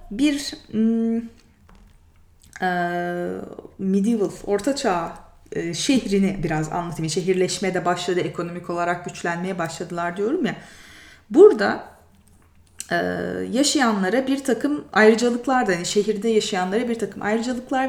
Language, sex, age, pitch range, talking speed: Turkish, female, 30-49, 165-235 Hz, 85 wpm